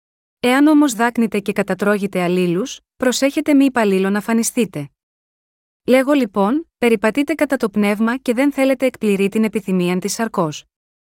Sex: female